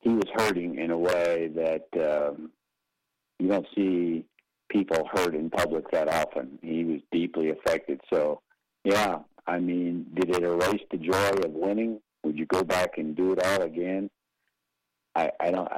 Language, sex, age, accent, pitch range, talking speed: English, male, 50-69, American, 75-95 Hz, 165 wpm